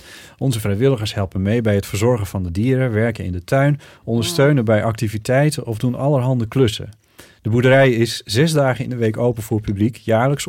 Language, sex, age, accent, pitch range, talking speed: Dutch, male, 40-59, Dutch, 105-140 Hz, 190 wpm